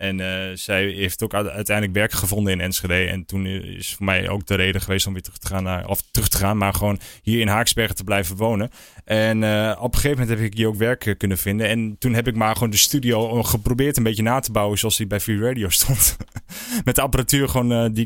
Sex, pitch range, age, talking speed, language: male, 95-120 Hz, 20-39, 255 wpm, Dutch